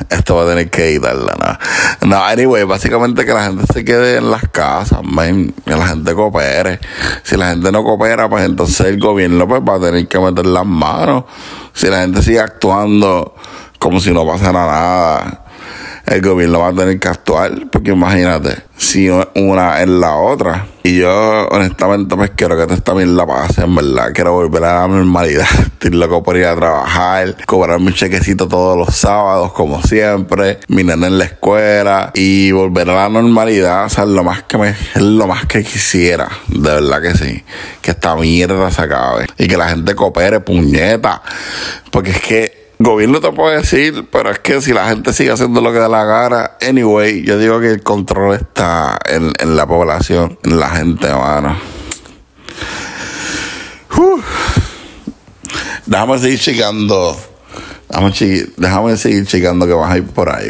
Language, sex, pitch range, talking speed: Spanish, male, 85-105 Hz, 175 wpm